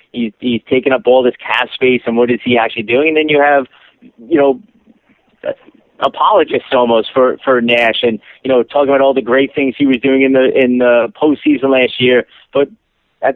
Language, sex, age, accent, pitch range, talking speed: English, male, 30-49, American, 125-145 Hz, 210 wpm